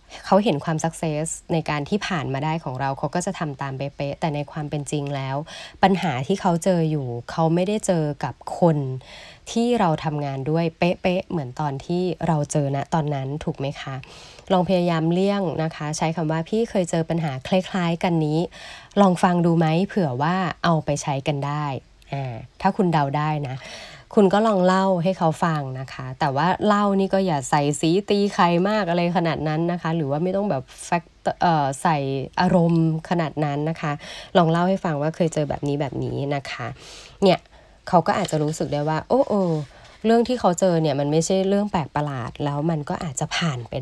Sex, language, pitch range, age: female, Thai, 145-185 Hz, 20-39